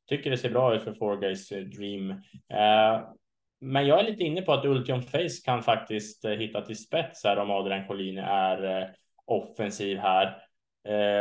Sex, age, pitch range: male, 20-39, 105-135 Hz